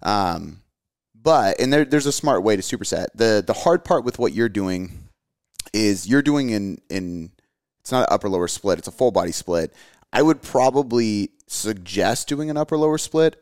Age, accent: 30-49, American